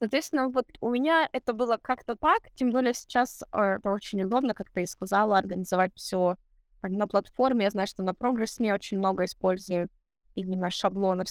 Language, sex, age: Russian, female, 20-39